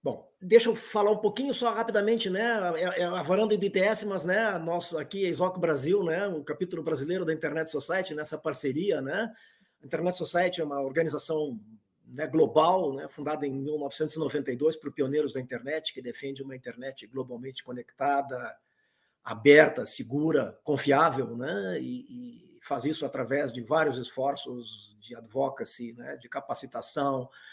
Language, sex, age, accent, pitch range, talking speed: Portuguese, male, 50-69, Brazilian, 130-165 Hz, 155 wpm